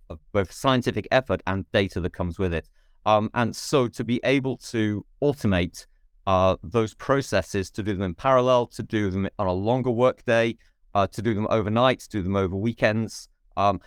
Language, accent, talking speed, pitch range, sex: English, British, 185 wpm, 95-130 Hz, male